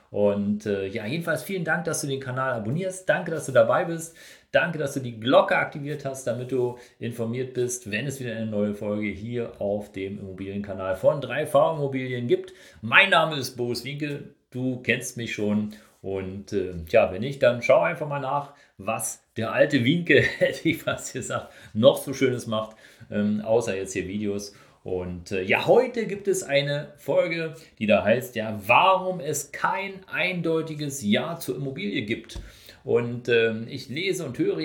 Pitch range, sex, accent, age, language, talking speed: 105-145 Hz, male, German, 40-59, German, 180 wpm